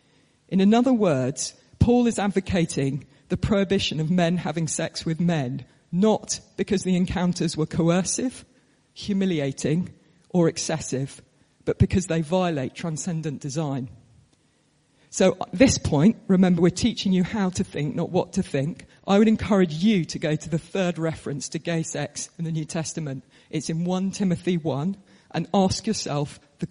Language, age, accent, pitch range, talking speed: English, 40-59, British, 145-185 Hz, 155 wpm